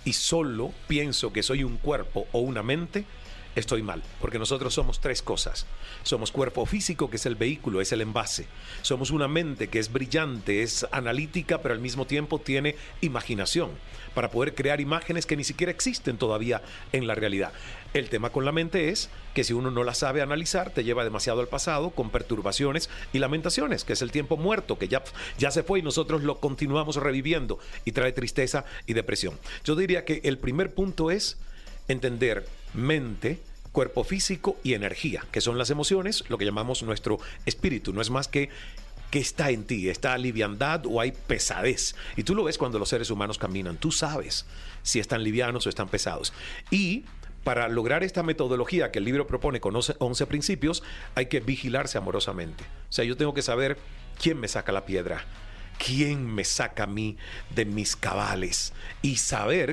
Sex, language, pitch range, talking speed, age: male, Spanish, 110-150 Hz, 185 wpm, 40-59